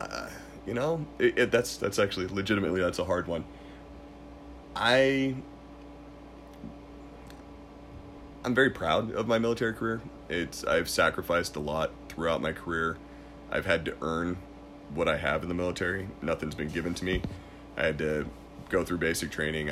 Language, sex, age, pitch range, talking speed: English, male, 30-49, 75-95 Hz, 155 wpm